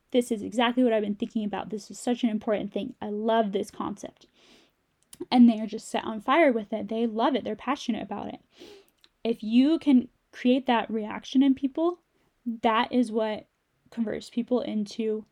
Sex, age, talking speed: female, 10-29, 190 wpm